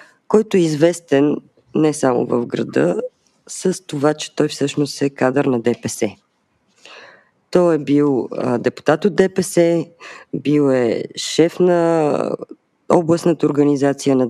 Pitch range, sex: 130-165 Hz, female